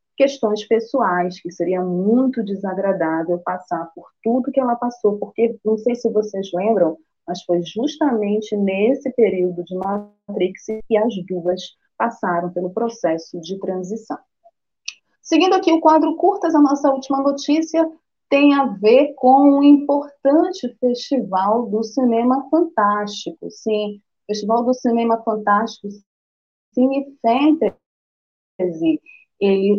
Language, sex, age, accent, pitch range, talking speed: Portuguese, female, 30-49, Brazilian, 200-270 Hz, 125 wpm